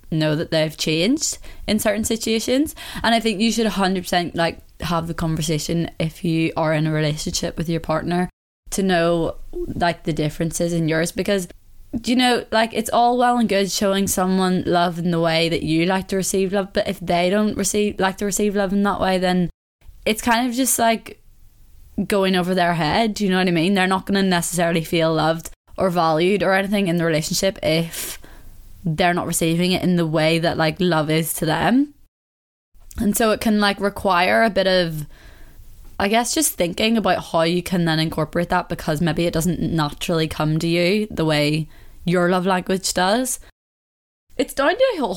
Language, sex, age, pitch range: English, female, 20-39, 165-210 Hz